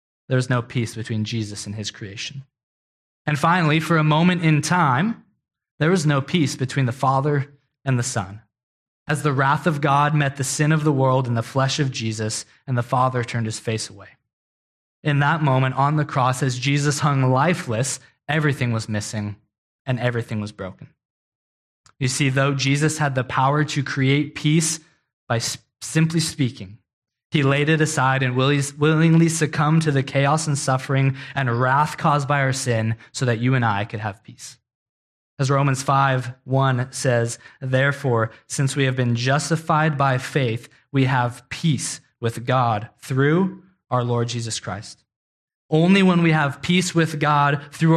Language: English